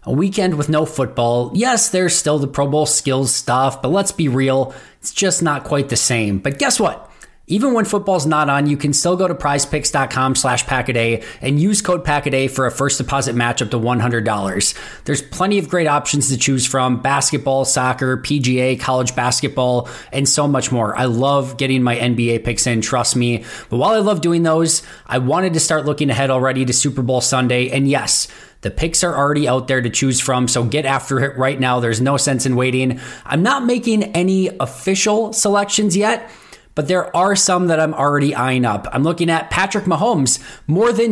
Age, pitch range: 20-39, 130-165 Hz